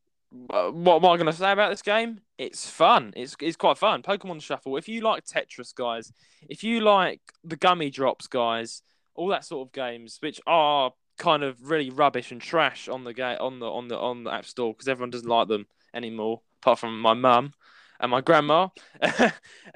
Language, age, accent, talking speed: English, 10-29, British, 195 wpm